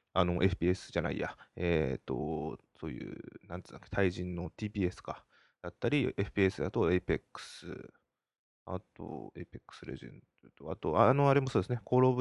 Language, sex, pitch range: Japanese, male, 95-155 Hz